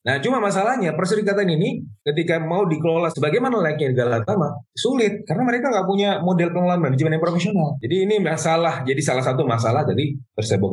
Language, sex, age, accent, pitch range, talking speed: Indonesian, male, 30-49, native, 115-170 Hz, 175 wpm